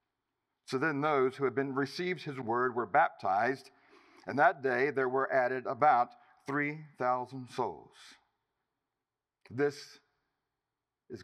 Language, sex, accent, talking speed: English, male, American, 115 wpm